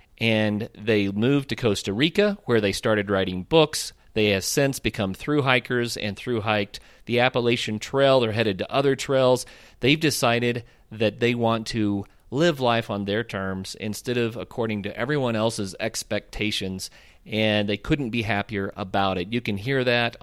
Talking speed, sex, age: 165 wpm, male, 40-59